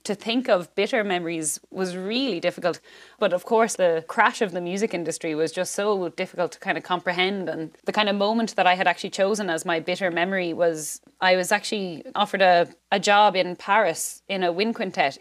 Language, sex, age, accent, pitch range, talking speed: English, female, 20-39, Irish, 175-205 Hz, 210 wpm